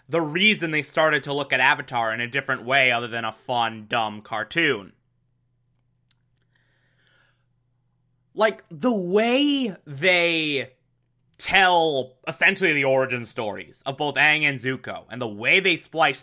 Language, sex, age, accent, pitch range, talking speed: English, male, 20-39, American, 125-150 Hz, 135 wpm